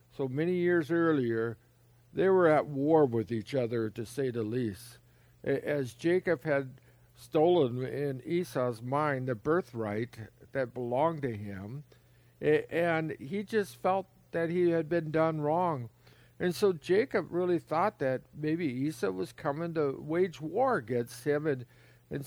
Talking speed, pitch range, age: 150 wpm, 125-155 Hz, 50-69